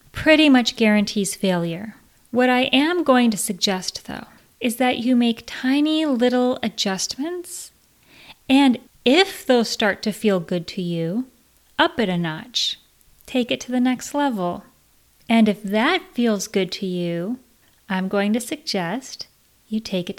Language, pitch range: English, 205-265 Hz